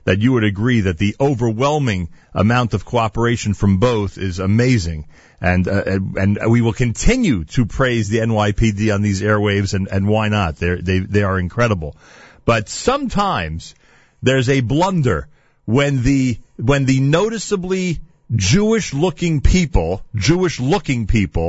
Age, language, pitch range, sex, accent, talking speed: 40-59, English, 105-150 Hz, male, American, 145 wpm